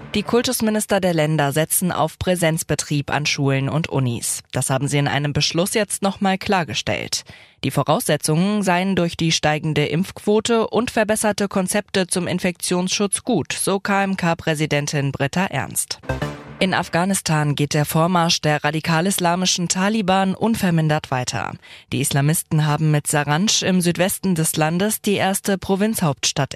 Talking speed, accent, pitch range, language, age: 135 wpm, German, 150-200 Hz, German, 20-39